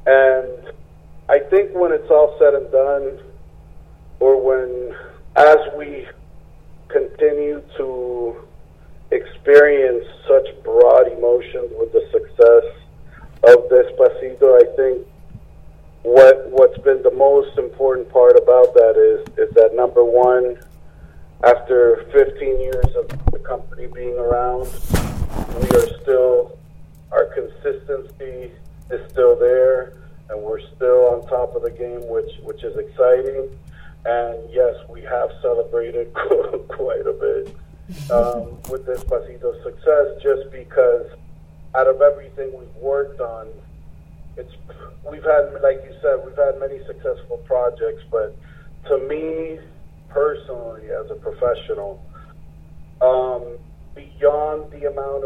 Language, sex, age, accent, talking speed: English, male, 50-69, American, 120 wpm